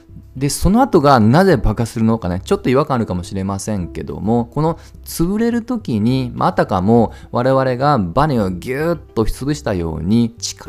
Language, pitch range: Japanese, 90-145 Hz